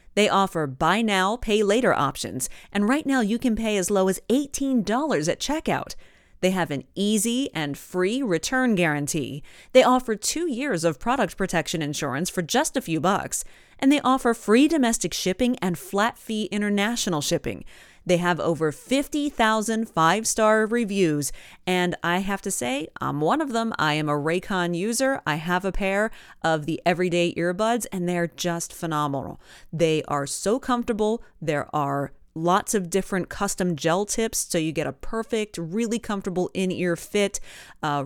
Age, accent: 30-49, American